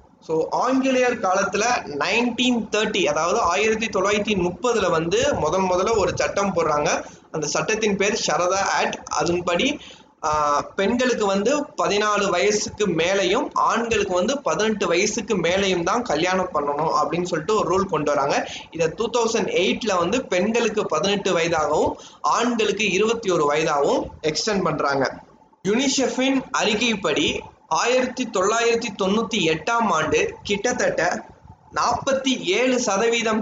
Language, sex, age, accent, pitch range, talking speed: Tamil, male, 20-39, native, 180-235 Hz, 75 wpm